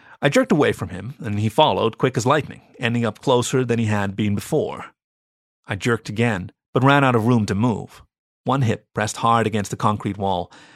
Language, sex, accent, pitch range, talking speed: English, male, American, 105-130 Hz, 205 wpm